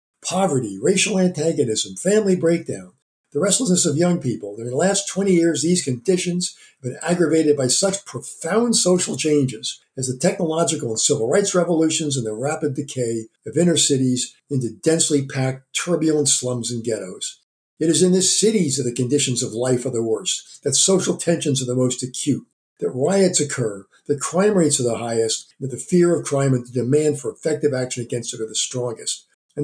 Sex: male